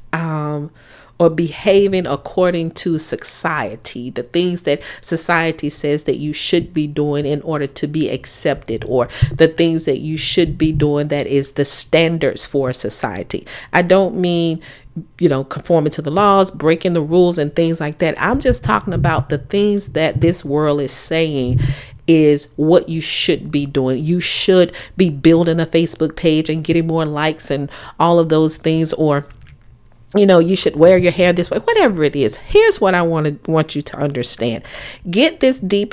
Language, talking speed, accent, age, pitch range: English, 180 wpm, American, 40-59, 145-175 Hz